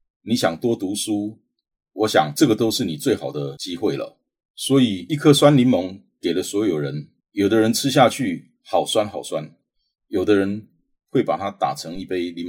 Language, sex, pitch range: Chinese, male, 95-145 Hz